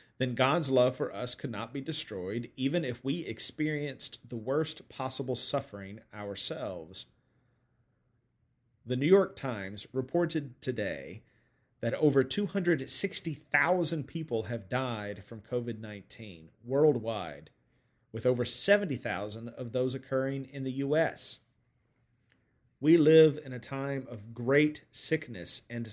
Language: English